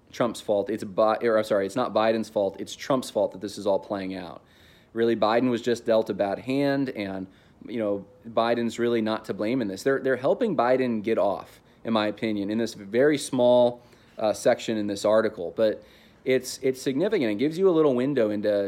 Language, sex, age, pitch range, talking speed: English, male, 30-49, 105-125 Hz, 215 wpm